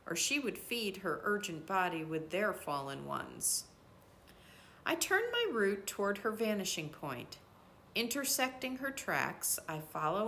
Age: 50-69